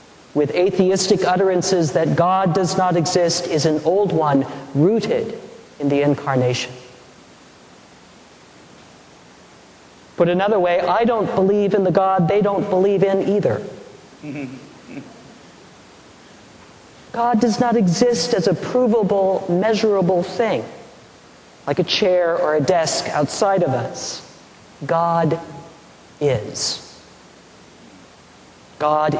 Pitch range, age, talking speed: 155-205 Hz, 50-69, 105 wpm